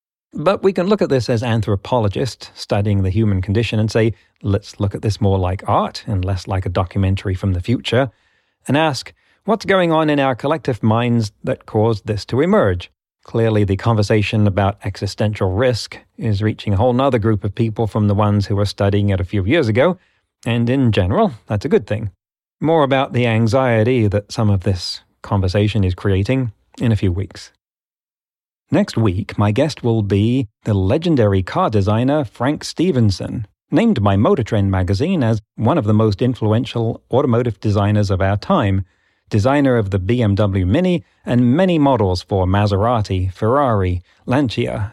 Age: 40-59